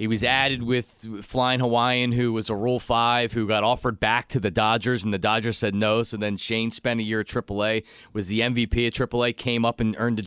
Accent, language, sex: American, English, male